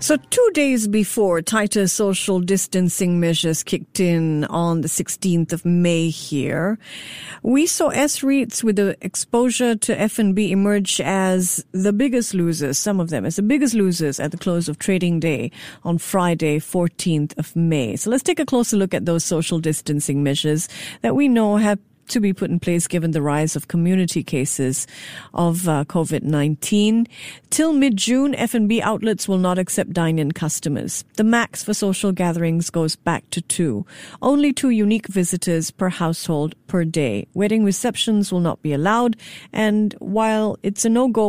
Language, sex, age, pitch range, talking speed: English, female, 50-69, 165-220 Hz, 165 wpm